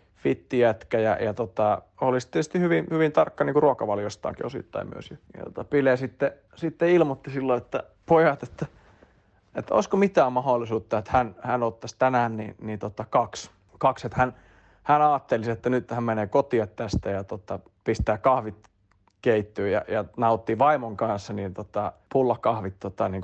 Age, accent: 30-49, native